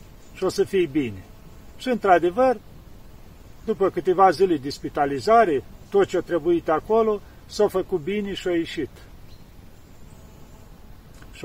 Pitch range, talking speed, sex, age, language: 130-175 Hz, 125 wpm, male, 50-69, Romanian